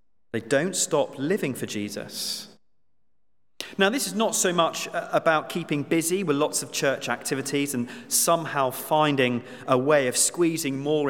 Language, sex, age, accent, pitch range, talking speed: English, male, 30-49, British, 125-160 Hz, 150 wpm